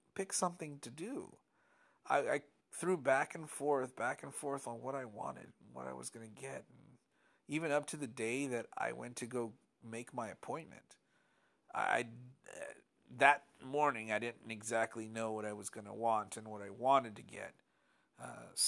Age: 40-59